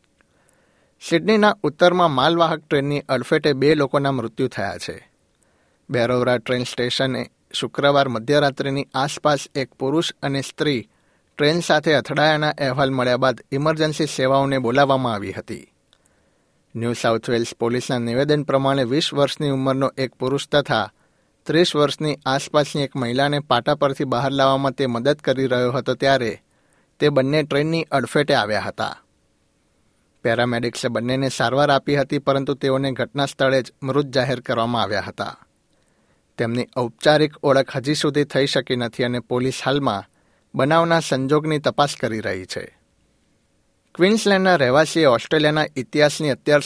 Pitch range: 125-145 Hz